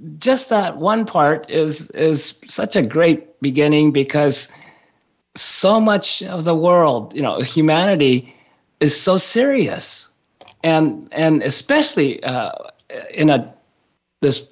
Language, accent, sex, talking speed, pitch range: English, American, male, 120 wpm, 140-175 Hz